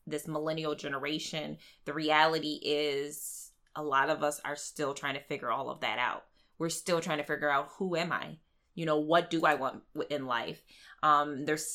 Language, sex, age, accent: English, female, 20-39, American